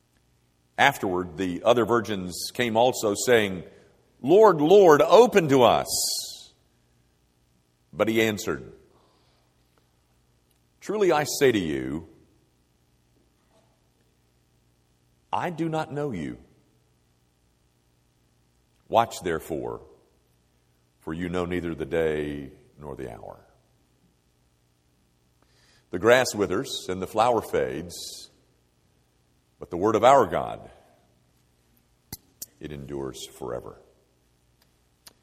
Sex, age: male, 50-69